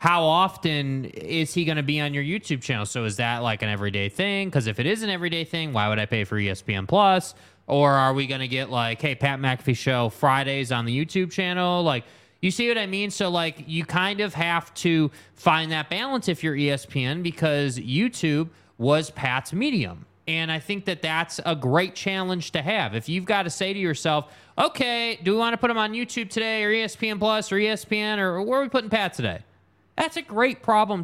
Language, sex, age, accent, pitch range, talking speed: English, male, 20-39, American, 145-205 Hz, 220 wpm